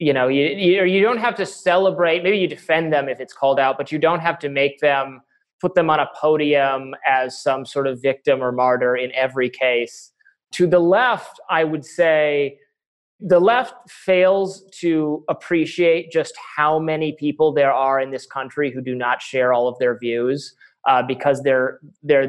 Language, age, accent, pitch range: English, 30-49, American, 135-170 Hz